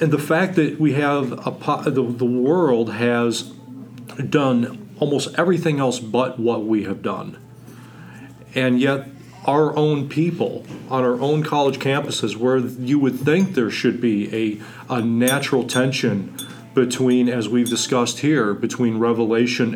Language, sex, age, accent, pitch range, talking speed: English, male, 40-59, American, 120-150 Hz, 150 wpm